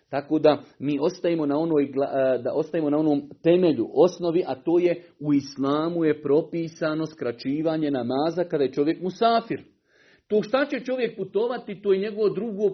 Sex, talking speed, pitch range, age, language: male, 160 wpm, 135-180 Hz, 40-59, Croatian